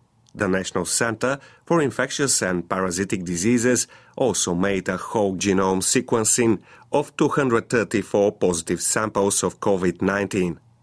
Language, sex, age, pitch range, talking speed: Bulgarian, male, 40-59, 95-120 Hz, 135 wpm